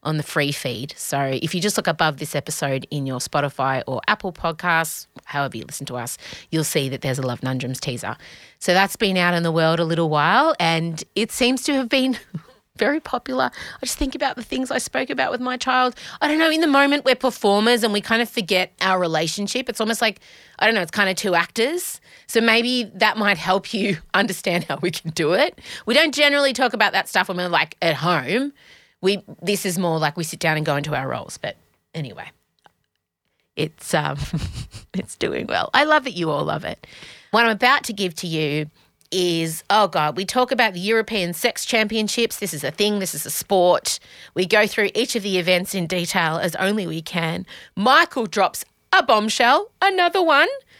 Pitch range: 165-245 Hz